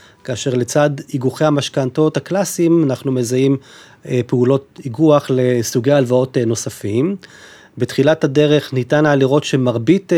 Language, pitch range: Hebrew, 125-160 Hz